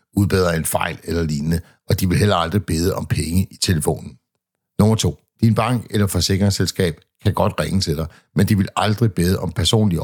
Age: 60-79